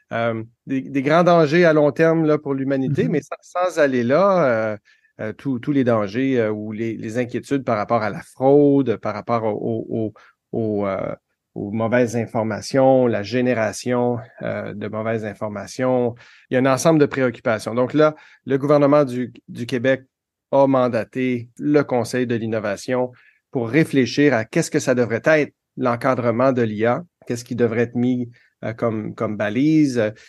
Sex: male